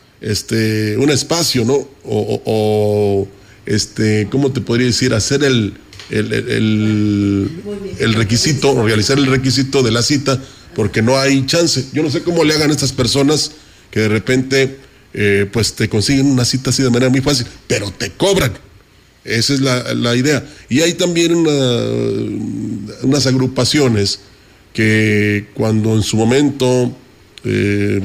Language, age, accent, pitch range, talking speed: Spanish, 40-59, Mexican, 105-135 Hz, 150 wpm